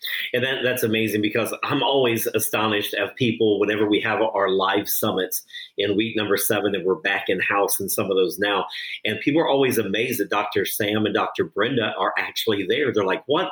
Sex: male